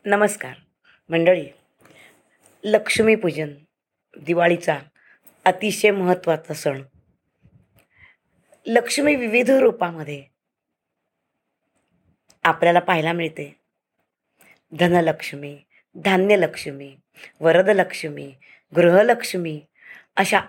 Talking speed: 55 wpm